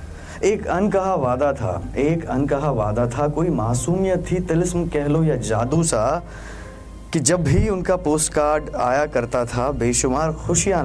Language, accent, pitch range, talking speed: Hindi, native, 100-155 Hz, 155 wpm